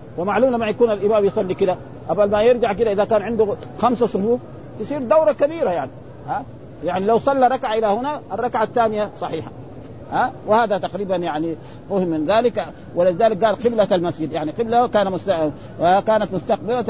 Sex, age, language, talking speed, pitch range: male, 50-69, Arabic, 160 wpm, 180-220 Hz